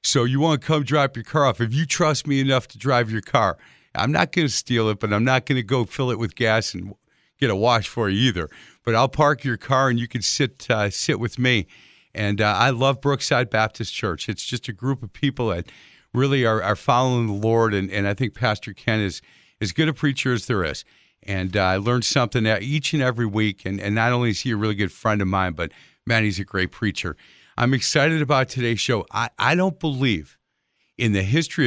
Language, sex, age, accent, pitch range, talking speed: English, male, 50-69, American, 110-140 Hz, 245 wpm